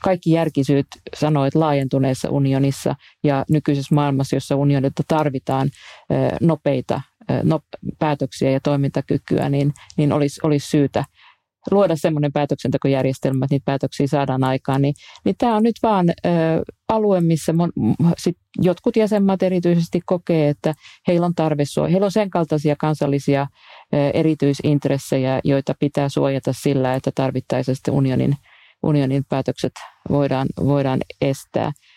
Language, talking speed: Finnish, 125 wpm